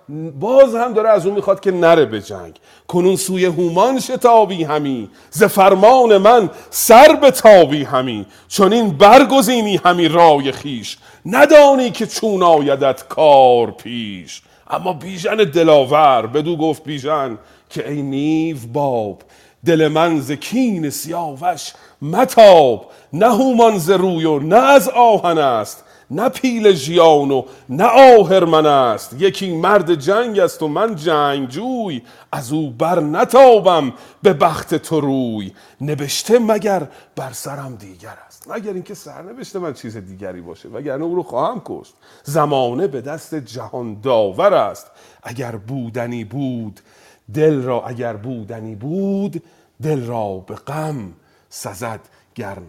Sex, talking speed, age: male, 135 wpm, 40-59